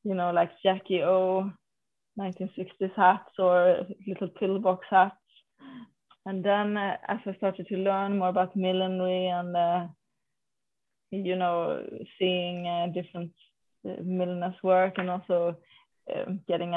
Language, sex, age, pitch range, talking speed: English, female, 20-39, 180-195 Hz, 130 wpm